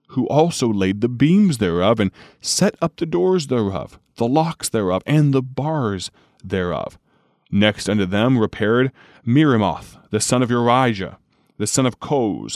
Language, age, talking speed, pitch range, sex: English, 30-49, 155 wpm, 95-125 Hz, male